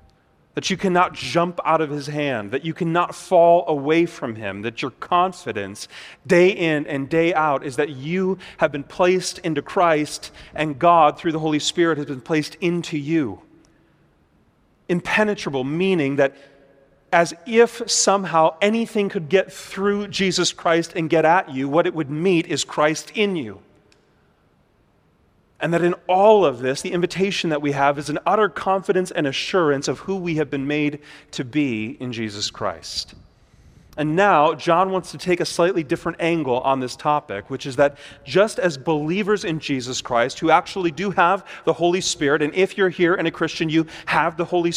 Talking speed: 180 wpm